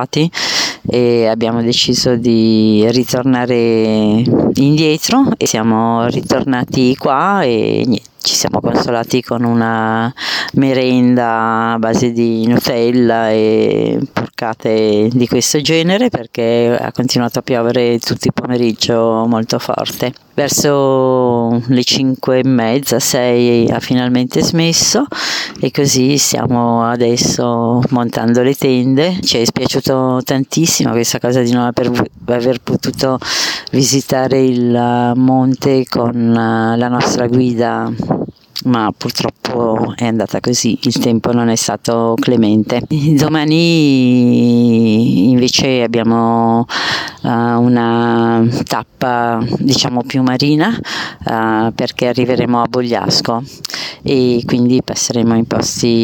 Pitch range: 115-130 Hz